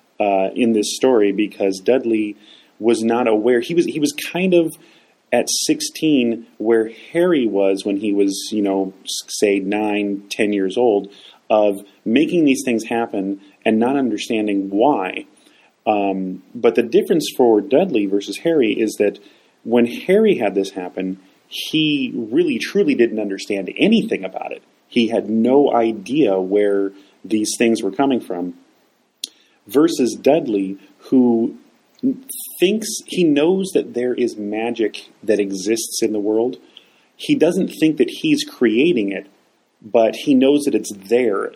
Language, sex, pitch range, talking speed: English, male, 100-135 Hz, 145 wpm